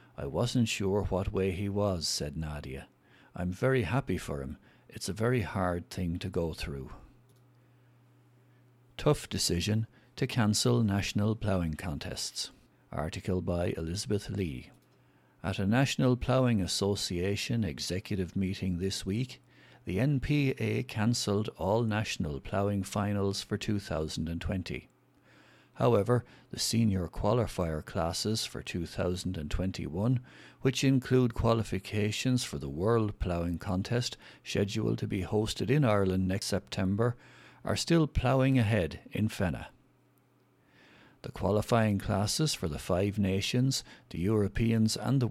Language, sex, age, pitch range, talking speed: English, male, 60-79, 95-120 Hz, 120 wpm